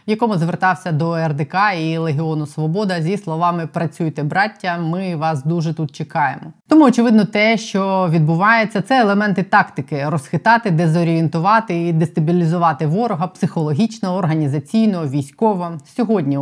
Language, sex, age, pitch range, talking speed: Ukrainian, female, 20-39, 155-185 Hz, 130 wpm